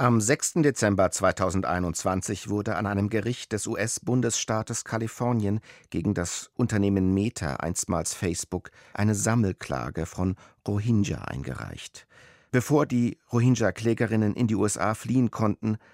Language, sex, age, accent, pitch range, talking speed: German, male, 50-69, German, 95-110 Hz, 115 wpm